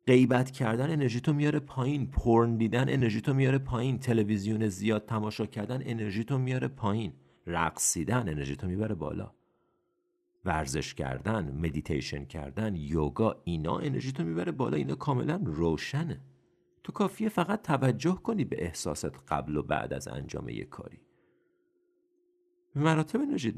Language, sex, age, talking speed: Persian, male, 50-69, 125 wpm